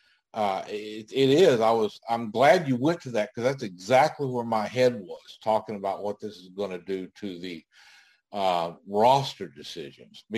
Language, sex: English, male